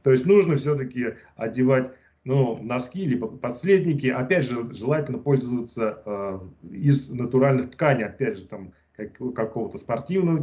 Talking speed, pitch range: 130 wpm, 120-150 Hz